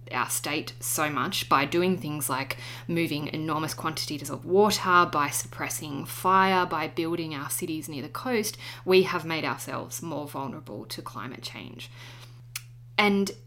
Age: 20-39